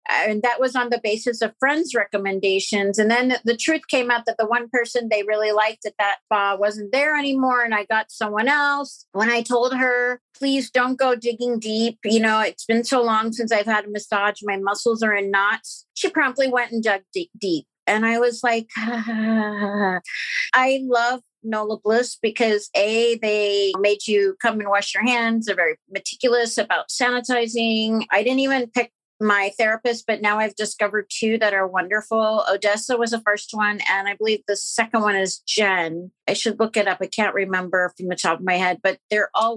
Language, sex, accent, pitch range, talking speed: English, female, American, 210-245 Hz, 205 wpm